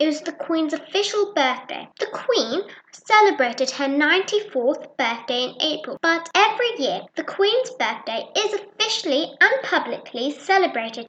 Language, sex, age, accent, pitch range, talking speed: English, female, 10-29, British, 275-395 Hz, 135 wpm